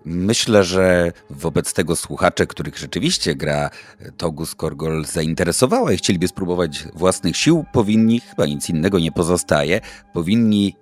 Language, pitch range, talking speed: Polish, 85-110 Hz, 130 wpm